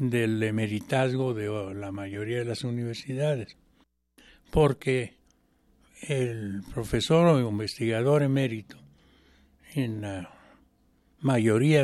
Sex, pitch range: male, 105-145 Hz